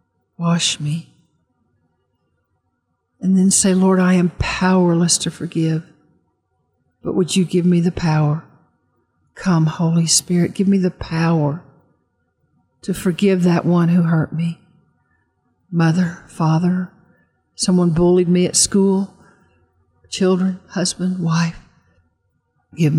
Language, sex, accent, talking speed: English, female, American, 110 wpm